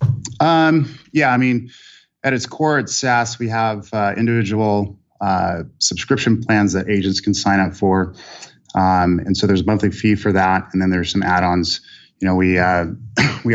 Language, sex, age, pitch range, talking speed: English, male, 30-49, 95-115 Hz, 180 wpm